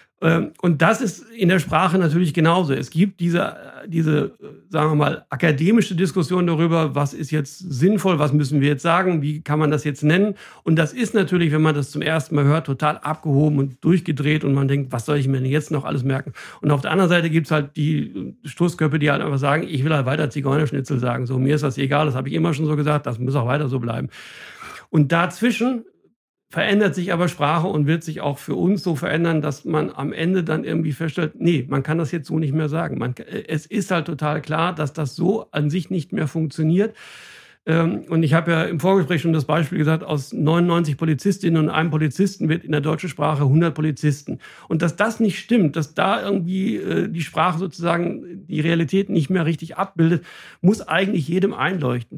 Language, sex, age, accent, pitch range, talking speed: German, male, 60-79, German, 150-180 Hz, 215 wpm